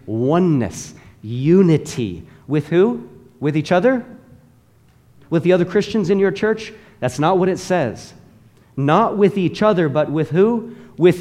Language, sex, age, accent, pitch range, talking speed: English, male, 40-59, American, 130-185 Hz, 145 wpm